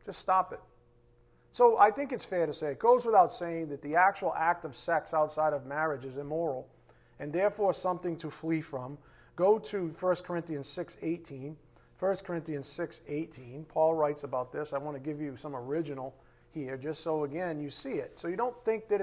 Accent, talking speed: American, 195 wpm